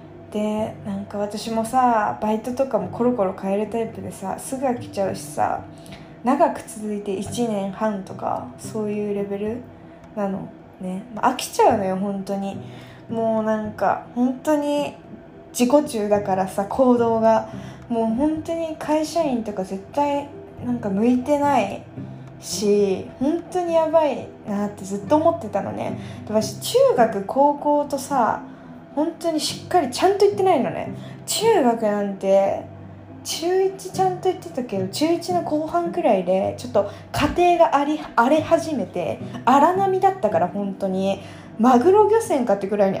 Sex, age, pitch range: female, 20-39, 205-310 Hz